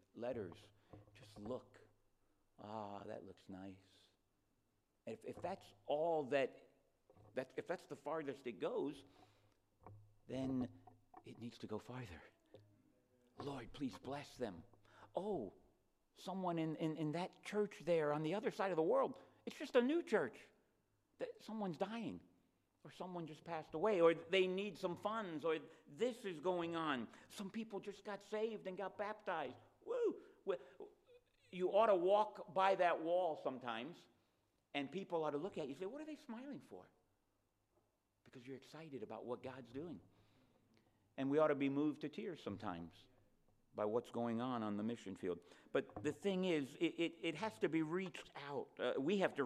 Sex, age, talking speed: male, 60-79, 165 wpm